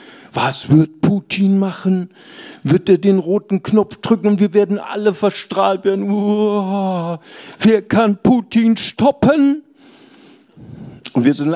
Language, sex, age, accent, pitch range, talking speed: German, male, 60-79, German, 140-195 Hz, 120 wpm